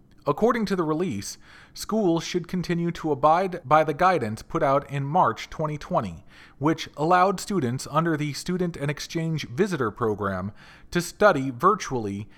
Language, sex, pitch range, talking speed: English, male, 130-175 Hz, 145 wpm